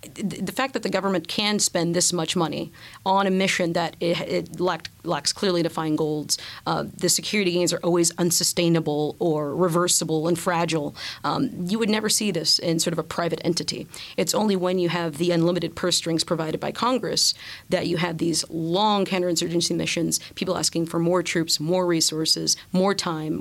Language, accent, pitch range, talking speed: English, American, 165-190 Hz, 180 wpm